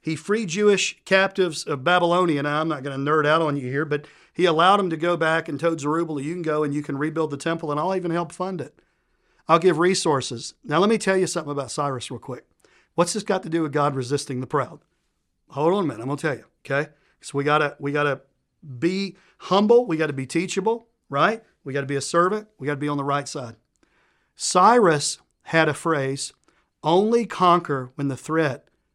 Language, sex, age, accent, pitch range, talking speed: English, male, 40-59, American, 140-170 Hz, 230 wpm